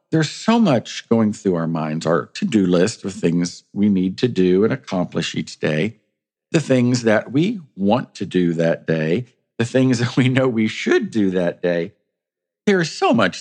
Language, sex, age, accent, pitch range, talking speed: English, male, 50-69, American, 95-150 Hz, 190 wpm